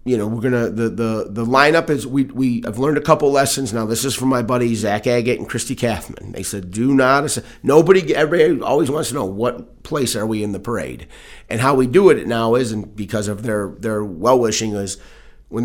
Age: 30-49